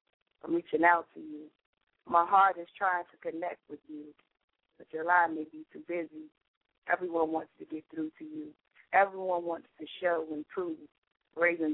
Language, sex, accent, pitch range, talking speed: English, female, American, 160-185 Hz, 175 wpm